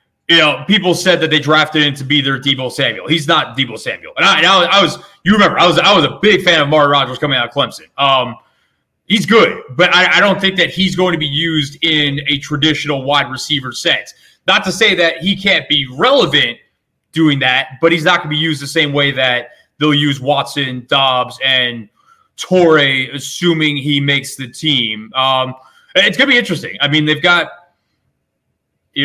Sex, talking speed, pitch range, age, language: male, 210 wpm, 135-165 Hz, 20-39, English